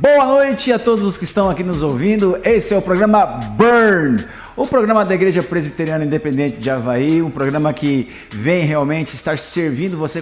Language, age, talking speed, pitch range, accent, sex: Portuguese, 50-69, 180 wpm, 135-185 Hz, Brazilian, male